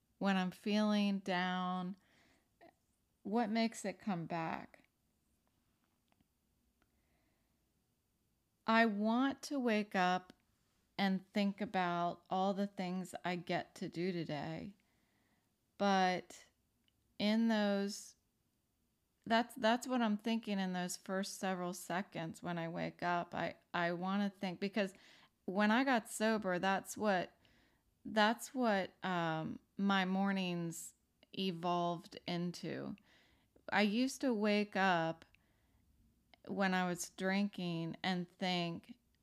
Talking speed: 110 wpm